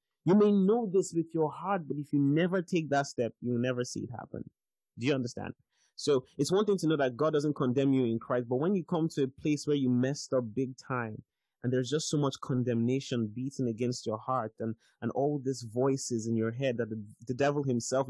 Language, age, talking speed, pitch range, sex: English, 20-39, 235 wpm, 120-155 Hz, male